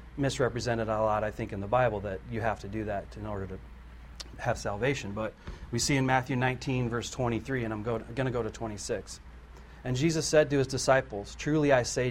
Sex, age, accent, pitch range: male, 40-59, American, 100-130 Hz